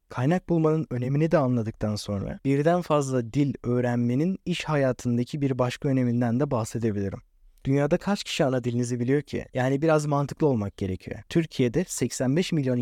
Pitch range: 120-160 Hz